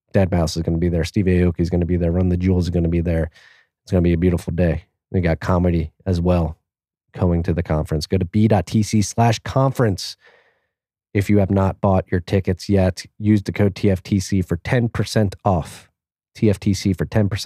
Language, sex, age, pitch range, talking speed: English, male, 30-49, 90-100 Hz, 205 wpm